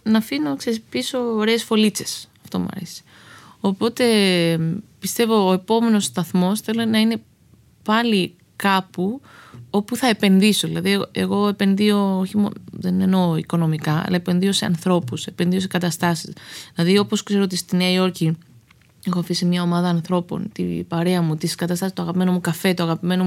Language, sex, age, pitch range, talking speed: Greek, female, 20-39, 170-200 Hz, 150 wpm